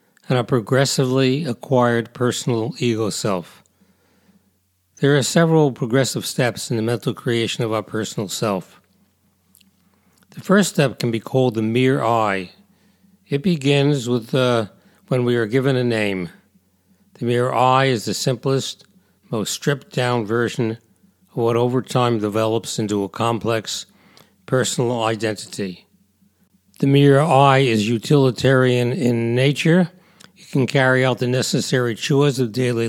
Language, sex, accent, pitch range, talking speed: English, male, American, 115-140 Hz, 135 wpm